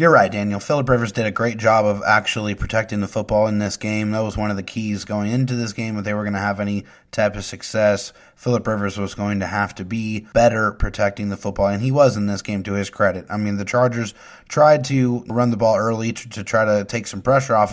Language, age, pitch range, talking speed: English, 30-49, 105-120 Hz, 255 wpm